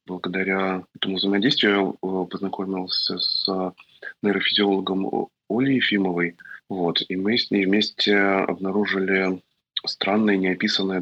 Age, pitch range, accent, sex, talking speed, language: 20-39, 95-110 Hz, native, male, 95 wpm, Russian